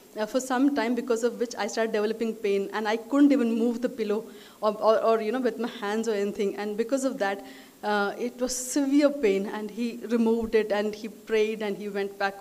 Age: 20-39